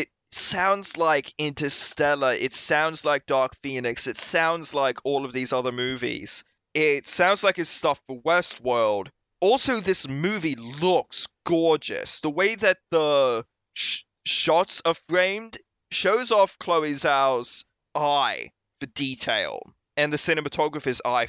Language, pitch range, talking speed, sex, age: English, 135-165 Hz, 130 wpm, male, 20-39